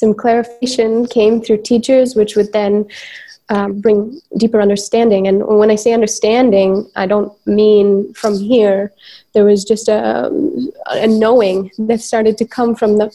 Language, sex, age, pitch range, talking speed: English, female, 20-39, 200-230 Hz, 155 wpm